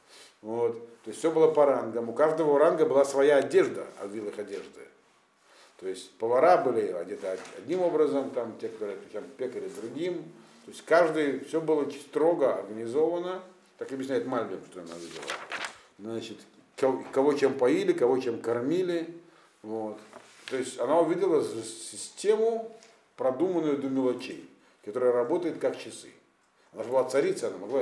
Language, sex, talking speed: Russian, male, 145 wpm